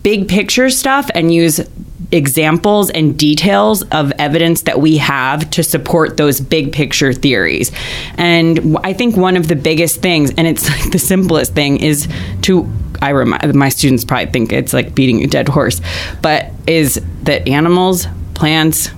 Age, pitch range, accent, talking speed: 20-39, 145-175 Hz, American, 165 wpm